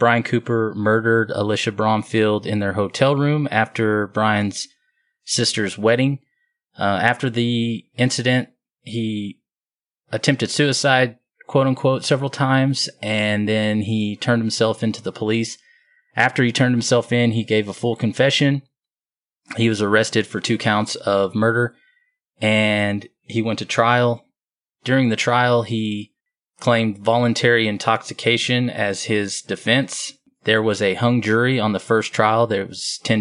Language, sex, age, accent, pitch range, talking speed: English, male, 20-39, American, 105-120 Hz, 140 wpm